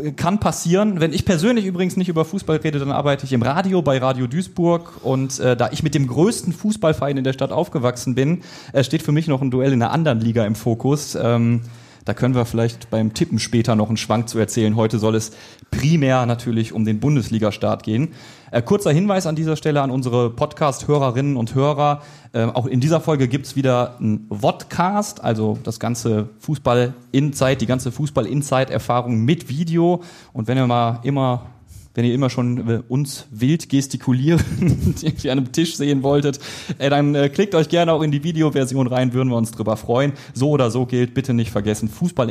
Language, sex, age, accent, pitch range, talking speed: German, male, 30-49, German, 120-155 Hz, 190 wpm